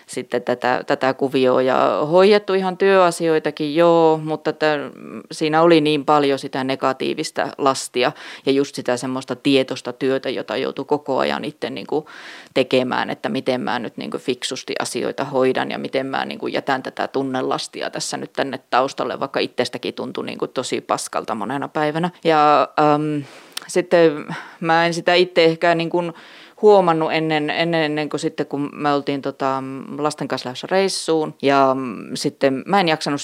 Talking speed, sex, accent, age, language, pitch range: 155 wpm, female, native, 20-39, Finnish, 135-160 Hz